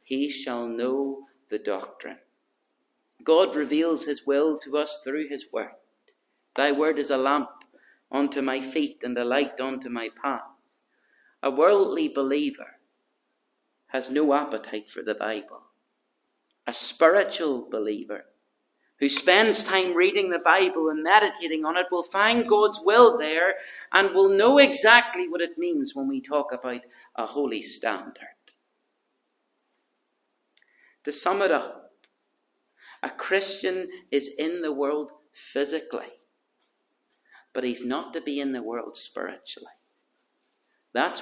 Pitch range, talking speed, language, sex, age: 140-200 Hz, 130 wpm, English, male, 40-59